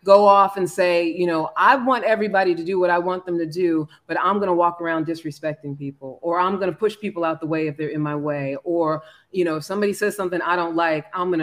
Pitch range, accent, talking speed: 160-215 Hz, American, 270 wpm